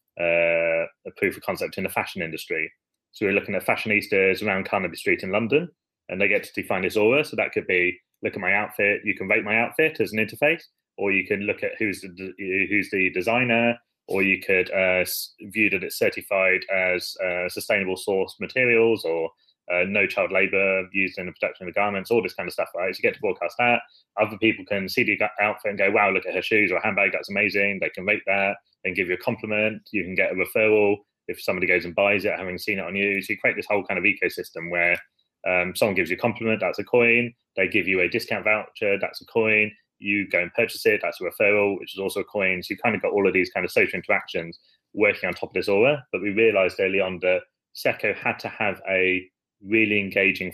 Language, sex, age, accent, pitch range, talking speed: English, male, 20-39, British, 90-110 Hz, 240 wpm